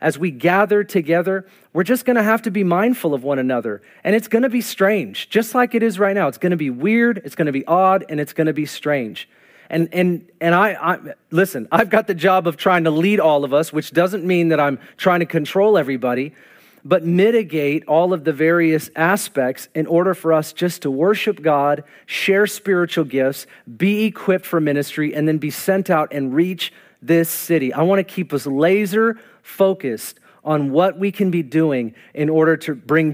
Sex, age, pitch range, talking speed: male, 40-59, 150-195 Hz, 200 wpm